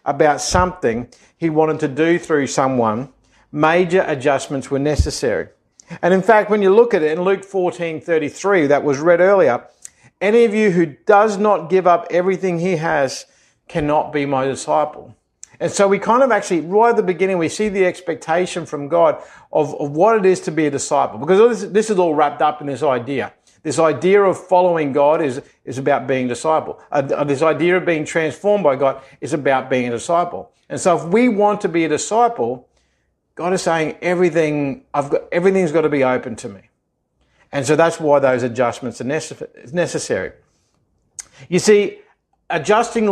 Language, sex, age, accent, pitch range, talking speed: English, male, 50-69, Australian, 145-185 Hz, 190 wpm